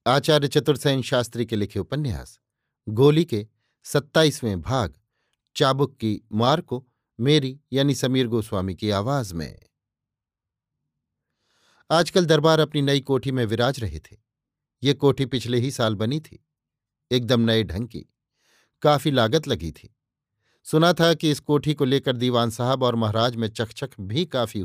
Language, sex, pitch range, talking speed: Hindi, male, 115-140 Hz, 145 wpm